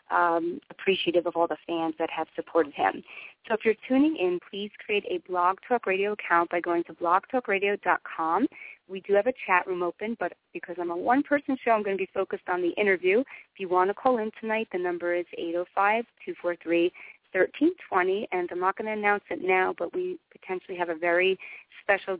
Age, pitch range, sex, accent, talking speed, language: 30-49, 170-210 Hz, female, American, 200 wpm, English